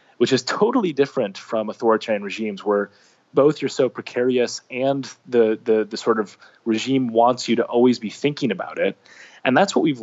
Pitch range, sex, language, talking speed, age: 115-140 Hz, male, English, 185 wpm, 20-39